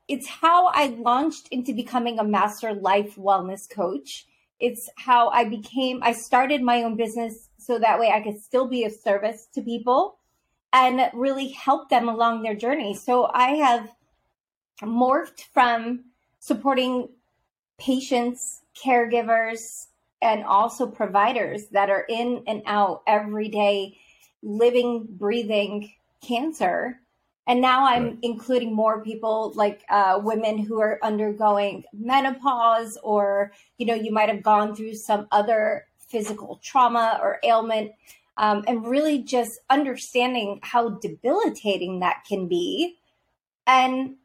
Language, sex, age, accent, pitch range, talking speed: English, female, 30-49, American, 210-255 Hz, 130 wpm